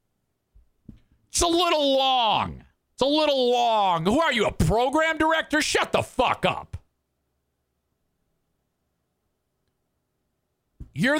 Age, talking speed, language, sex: 50-69, 100 wpm, English, male